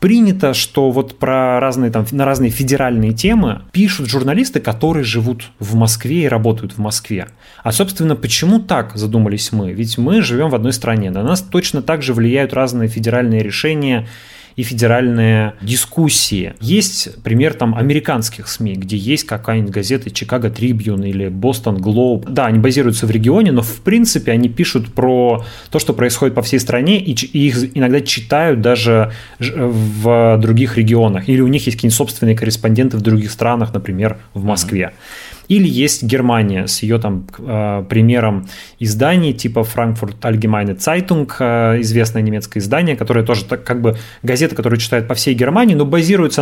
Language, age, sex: Russian, 30-49, male